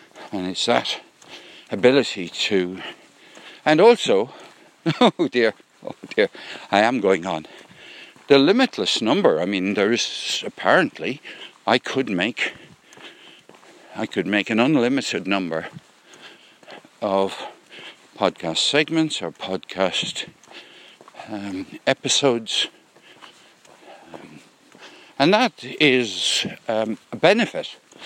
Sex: male